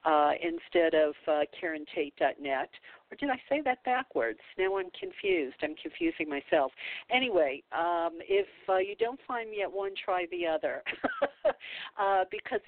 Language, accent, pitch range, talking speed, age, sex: English, American, 150-195 Hz, 150 wpm, 50-69, female